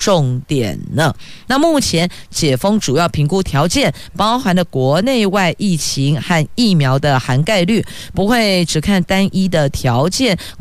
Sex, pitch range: female, 145-205 Hz